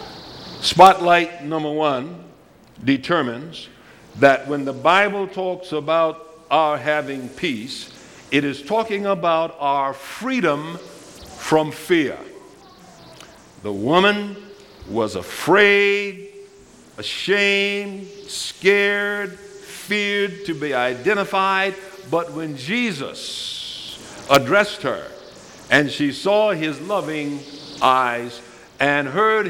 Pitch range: 140-195 Hz